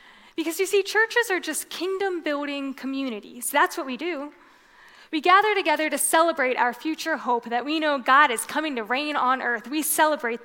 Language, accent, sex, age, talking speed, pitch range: English, American, female, 10-29, 185 wpm, 255-345 Hz